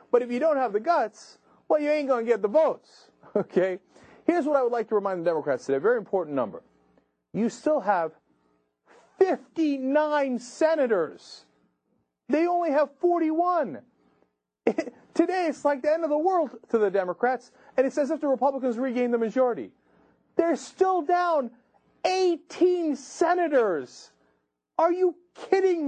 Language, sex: English, male